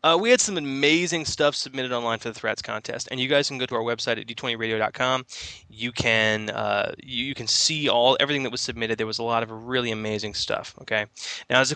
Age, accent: 20-39, American